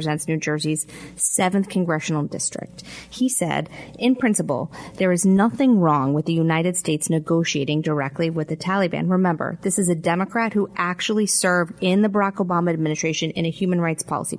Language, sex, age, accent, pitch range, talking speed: English, female, 30-49, American, 165-200 Hz, 170 wpm